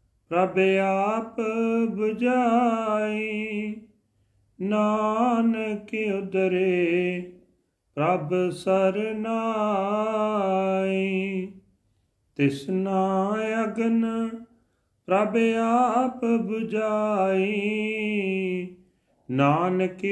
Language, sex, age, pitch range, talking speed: Punjabi, male, 40-59, 135-195 Hz, 40 wpm